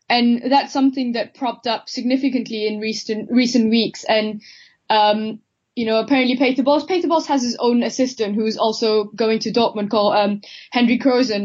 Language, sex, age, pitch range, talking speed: English, female, 10-29, 220-255 Hz, 160 wpm